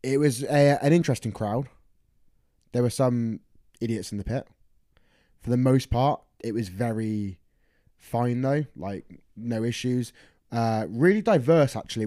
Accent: British